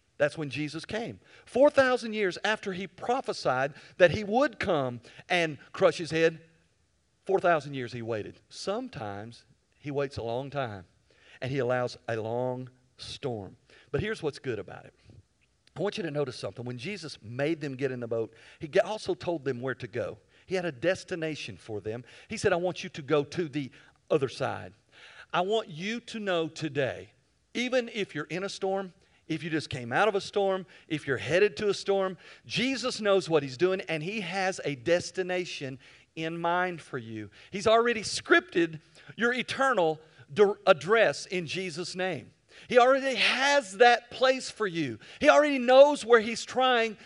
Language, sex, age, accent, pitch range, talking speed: English, male, 50-69, American, 150-225 Hz, 175 wpm